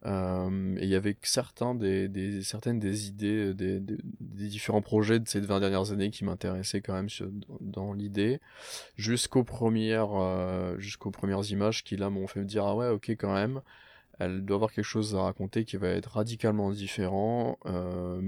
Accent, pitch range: French, 95-105 Hz